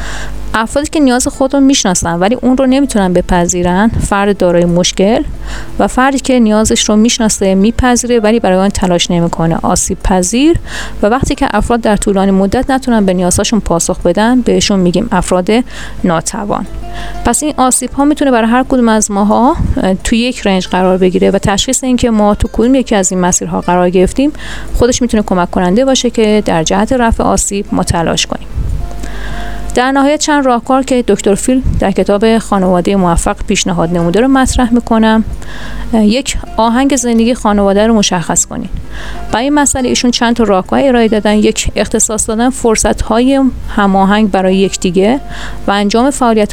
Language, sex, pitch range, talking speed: Persian, female, 190-250 Hz, 165 wpm